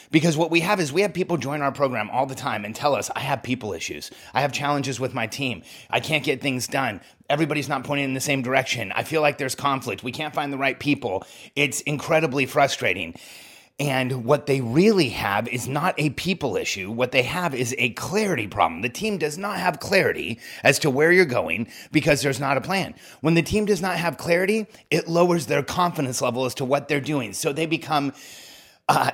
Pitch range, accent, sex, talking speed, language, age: 135-170 Hz, American, male, 220 wpm, English, 30-49